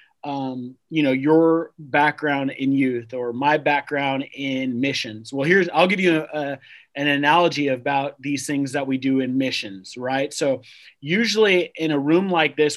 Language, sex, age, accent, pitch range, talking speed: English, male, 30-49, American, 140-170 Hz, 175 wpm